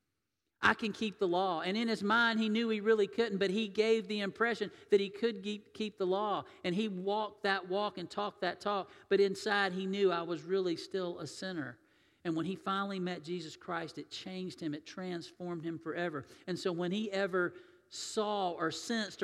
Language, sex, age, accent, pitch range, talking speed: English, male, 50-69, American, 175-210 Hz, 205 wpm